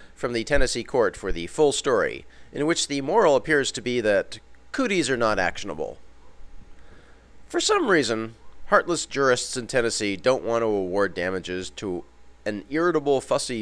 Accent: American